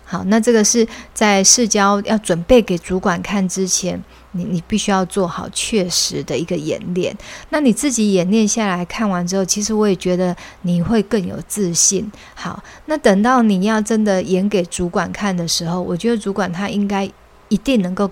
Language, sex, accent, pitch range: Chinese, female, native, 185-215 Hz